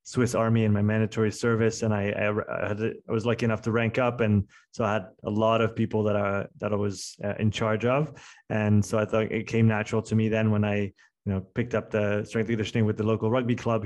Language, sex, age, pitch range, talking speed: French, male, 20-39, 110-120 Hz, 245 wpm